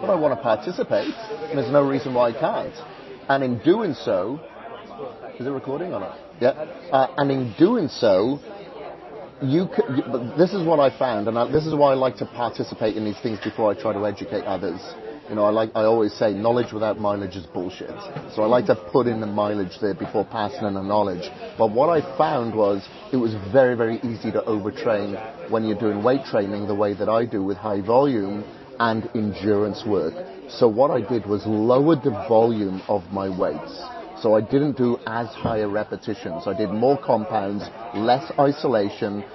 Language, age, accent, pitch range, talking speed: English, 30-49, British, 105-130 Hz, 200 wpm